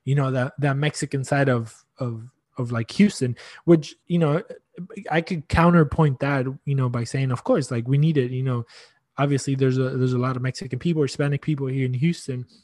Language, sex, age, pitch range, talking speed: English, male, 20-39, 130-155 Hz, 215 wpm